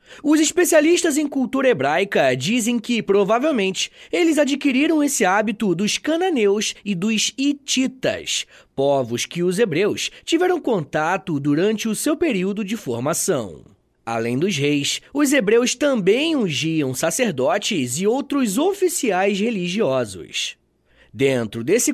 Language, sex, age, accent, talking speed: Portuguese, male, 20-39, Brazilian, 120 wpm